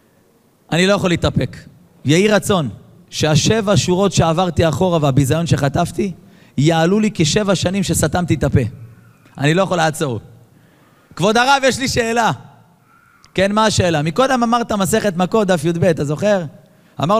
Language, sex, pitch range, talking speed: Hebrew, male, 155-210 Hz, 140 wpm